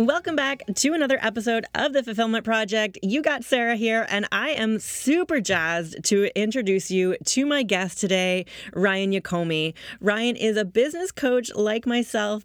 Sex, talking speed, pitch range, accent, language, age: female, 165 wpm, 180-230 Hz, American, English, 30-49